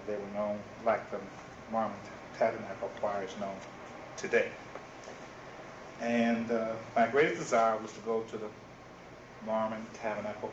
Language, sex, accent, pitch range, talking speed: English, male, American, 105-115 Hz, 130 wpm